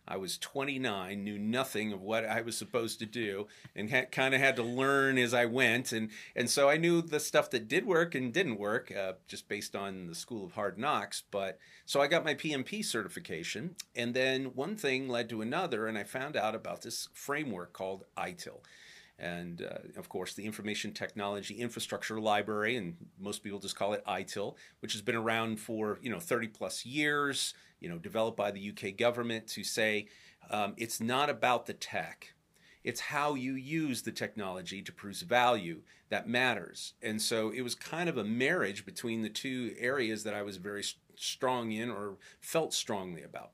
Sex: male